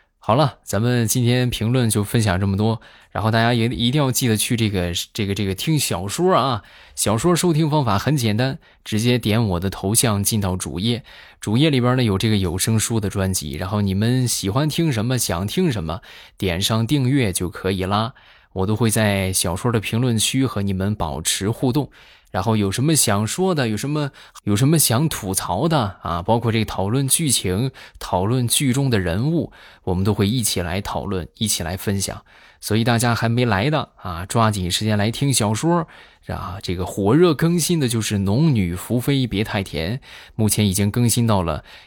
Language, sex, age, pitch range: Chinese, male, 20-39, 95-125 Hz